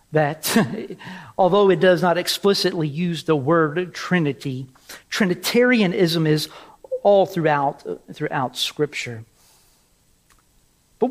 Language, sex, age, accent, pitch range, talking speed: English, male, 50-69, American, 155-215 Hz, 90 wpm